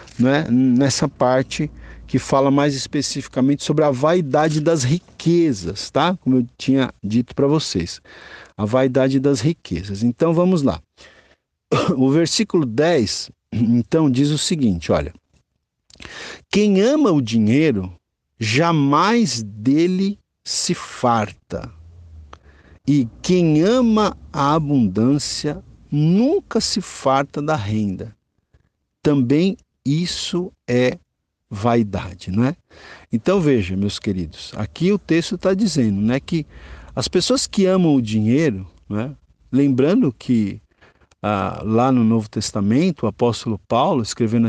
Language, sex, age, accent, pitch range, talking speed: Portuguese, male, 50-69, Brazilian, 110-160 Hz, 115 wpm